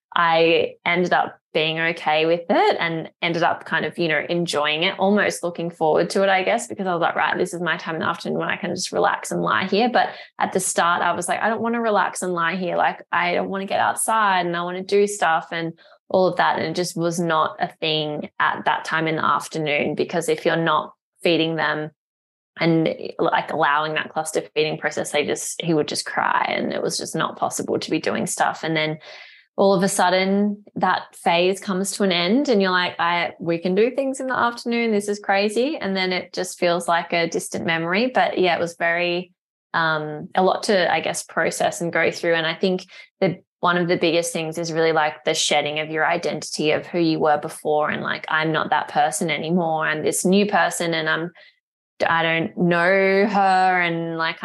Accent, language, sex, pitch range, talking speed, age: Australian, English, female, 160-190 Hz, 230 wpm, 20-39